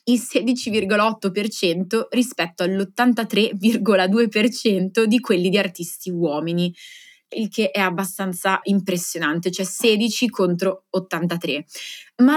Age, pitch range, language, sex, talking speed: 20-39, 185-230 Hz, Italian, female, 90 wpm